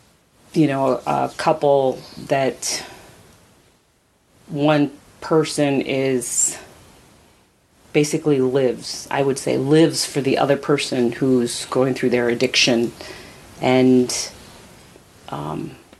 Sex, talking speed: female, 95 wpm